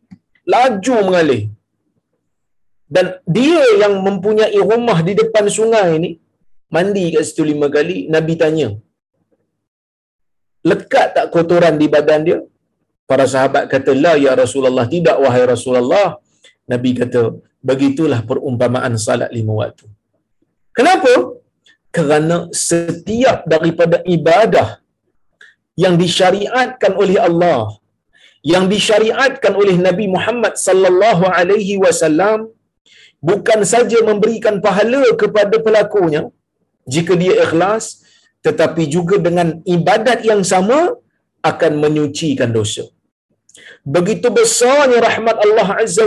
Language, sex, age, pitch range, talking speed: Malayalam, male, 50-69, 155-225 Hz, 105 wpm